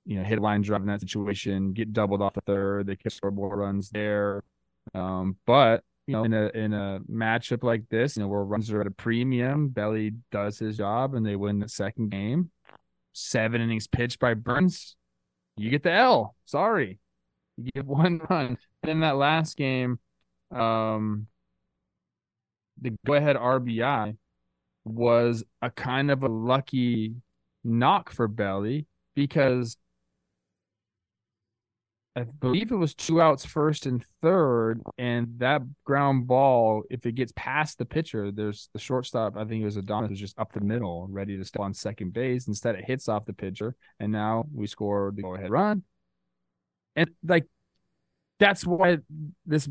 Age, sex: 20-39, male